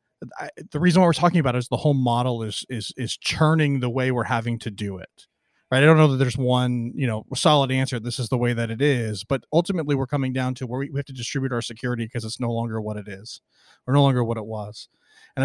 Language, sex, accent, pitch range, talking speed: English, male, American, 115-150 Hz, 265 wpm